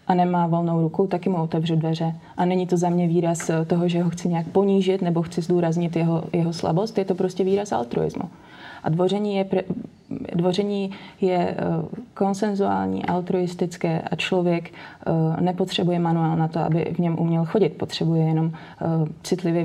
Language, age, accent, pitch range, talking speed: Czech, 20-39, native, 165-185 Hz, 160 wpm